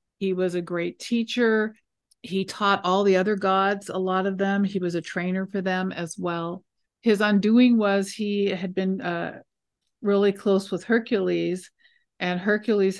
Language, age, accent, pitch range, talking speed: English, 50-69, American, 170-200 Hz, 165 wpm